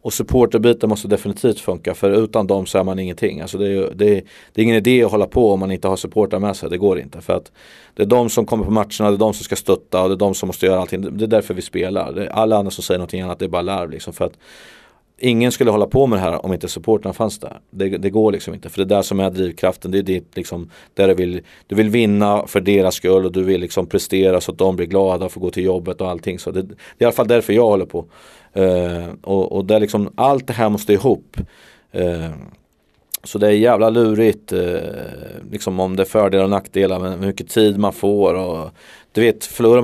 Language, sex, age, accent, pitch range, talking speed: Swedish, male, 30-49, native, 95-110 Hz, 265 wpm